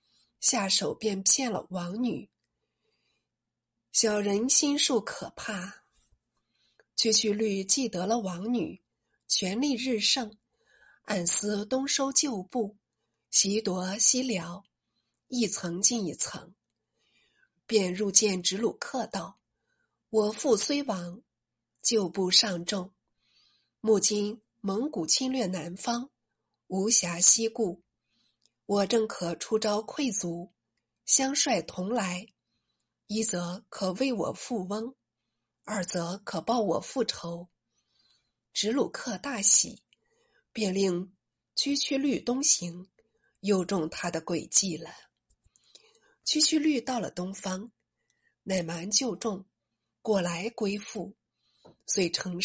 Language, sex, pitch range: Chinese, female, 180-240 Hz